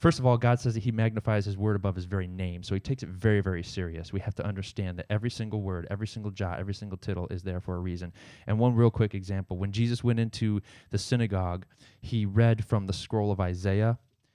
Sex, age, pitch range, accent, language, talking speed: male, 20-39, 100-115 Hz, American, English, 245 wpm